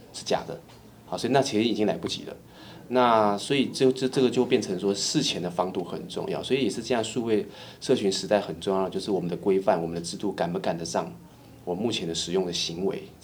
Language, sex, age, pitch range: Chinese, male, 20-39, 95-120 Hz